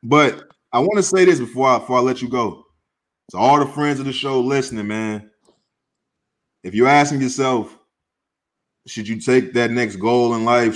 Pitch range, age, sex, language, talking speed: 105-130 Hz, 20-39, male, English, 190 wpm